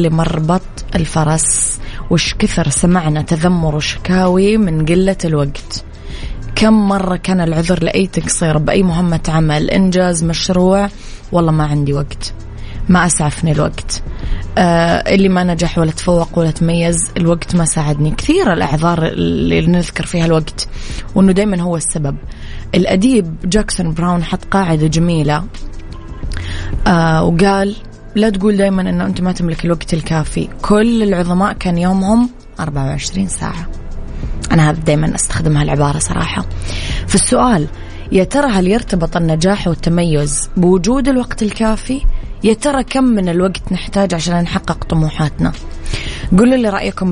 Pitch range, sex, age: 145-190 Hz, female, 20-39